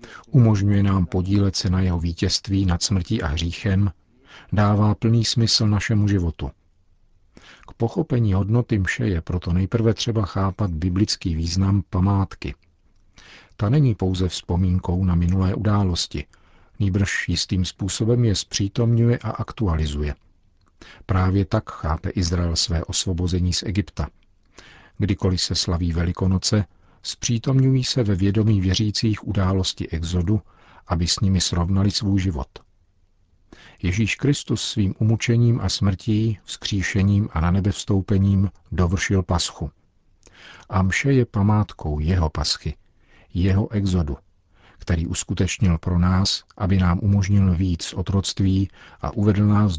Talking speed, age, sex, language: 120 wpm, 50-69, male, Czech